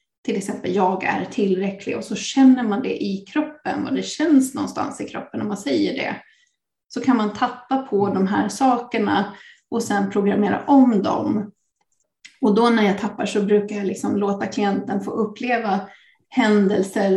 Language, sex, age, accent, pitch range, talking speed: Swedish, female, 30-49, native, 205-250 Hz, 170 wpm